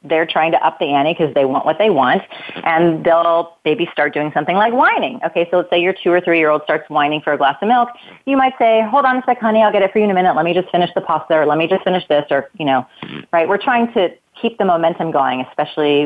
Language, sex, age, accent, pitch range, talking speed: English, female, 30-49, American, 150-195 Hz, 280 wpm